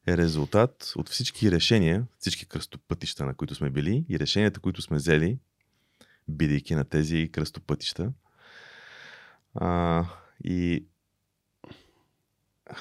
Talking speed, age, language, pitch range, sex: 110 wpm, 30-49, Bulgarian, 80-110 Hz, male